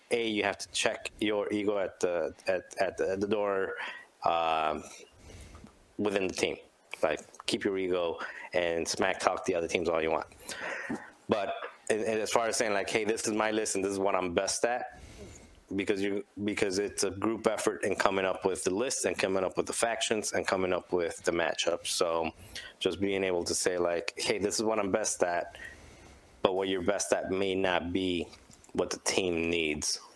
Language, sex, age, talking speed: English, male, 20-39, 200 wpm